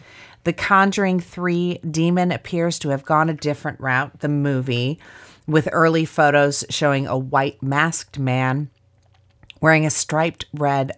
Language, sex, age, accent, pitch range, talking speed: English, female, 30-49, American, 120-165 Hz, 135 wpm